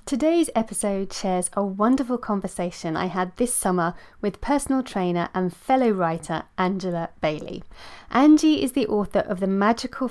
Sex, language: female, English